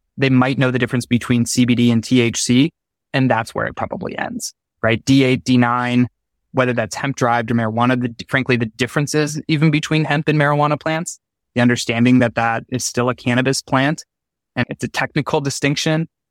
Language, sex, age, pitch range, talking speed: English, male, 20-39, 115-130 Hz, 185 wpm